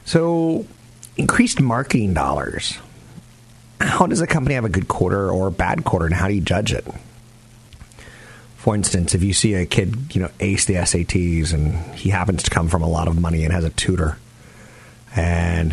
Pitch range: 90-120 Hz